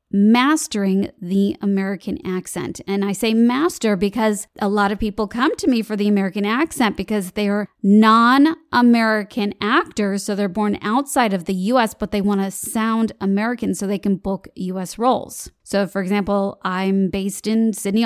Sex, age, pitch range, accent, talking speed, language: female, 30-49, 200-250 Hz, American, 165 wpm, English